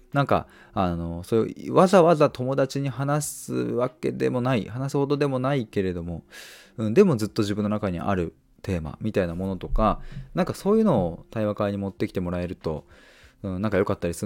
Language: Japanese